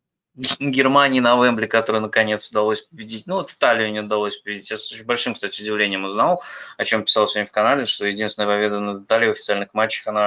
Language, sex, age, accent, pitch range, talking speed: Russian, male, 20-39, native, 110-145 Hz, 200 wpm